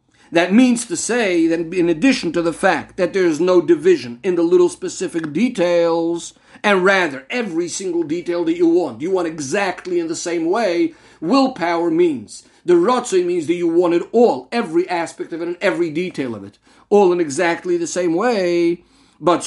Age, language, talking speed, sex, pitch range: 50-69, English, 190 wpm, male, 190-285 Hz